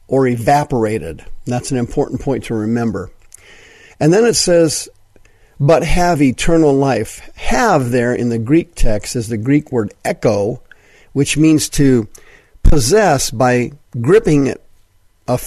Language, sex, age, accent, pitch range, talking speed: English, male, 50-69, American, 110-150 Hz, 130 wpm